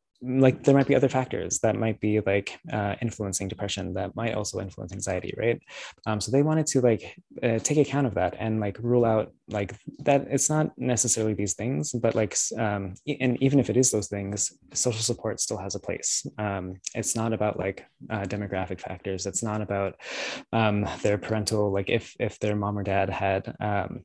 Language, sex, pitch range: English, male, 100-120 Hz